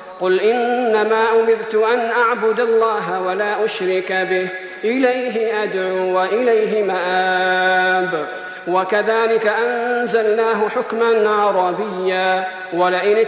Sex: male